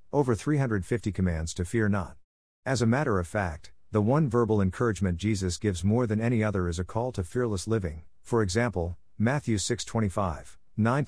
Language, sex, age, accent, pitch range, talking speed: English, male, 50-69, American, 90-115 Hz, 175 wpm